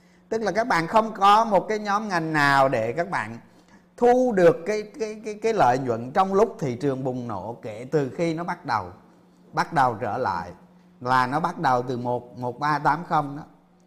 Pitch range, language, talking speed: 135-180 Hz, Vietnamese, 200 wpm